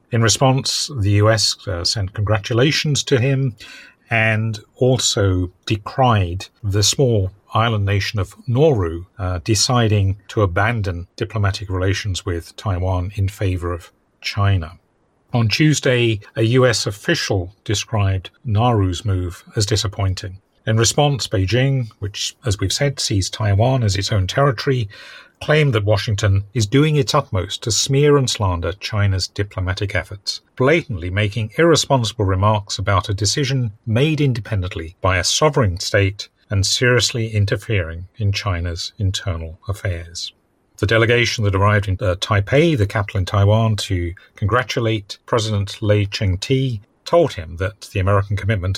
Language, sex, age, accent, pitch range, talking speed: English, male, 40-59, British, 95-115 Hz, 135 wpm